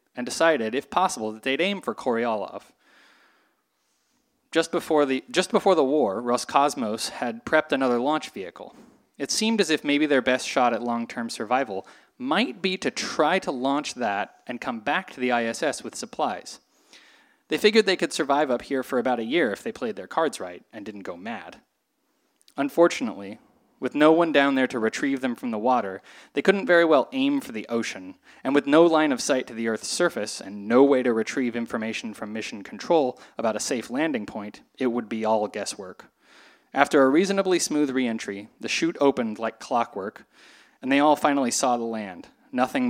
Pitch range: 115-170 Hz